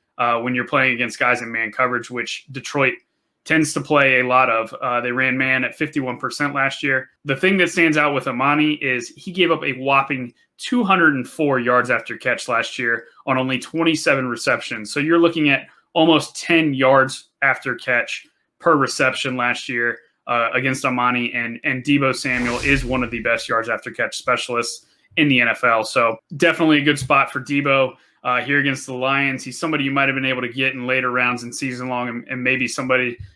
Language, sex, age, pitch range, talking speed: English, male, 20-39, 125-145 Hz, 200 wpm